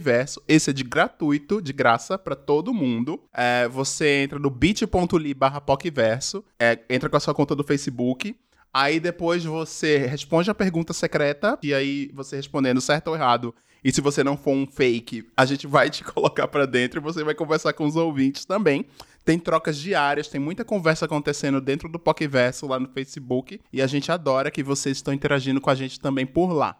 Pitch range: 135-170 Hz